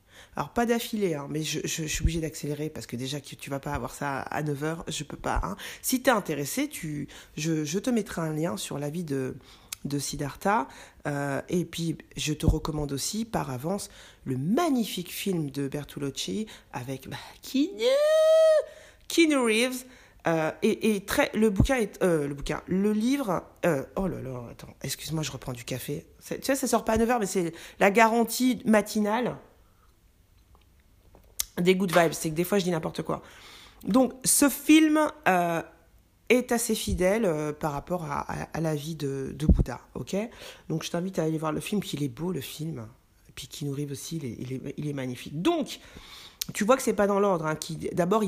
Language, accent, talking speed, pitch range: French, French, 205 wpm, 145-215 Hz